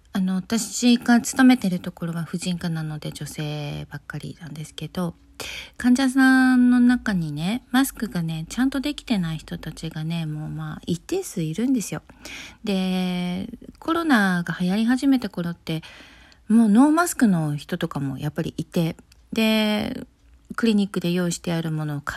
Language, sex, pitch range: Japanese, female, 165-225 Hz